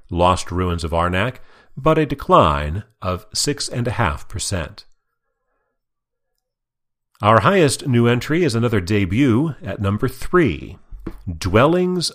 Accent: American